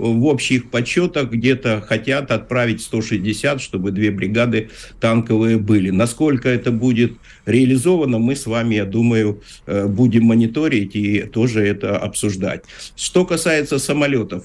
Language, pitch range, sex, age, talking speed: Russian, 105-130 Hz, male, 50-69, 125 wpm